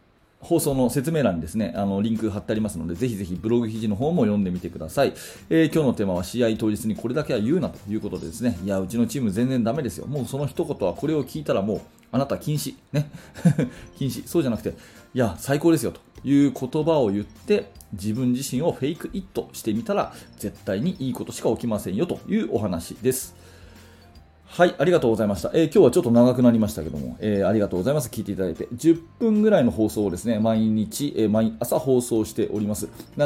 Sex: male